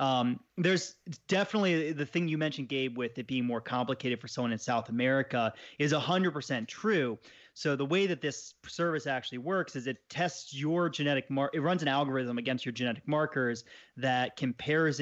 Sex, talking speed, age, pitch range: male, 190 wpm, 30-49, 120-150 Hz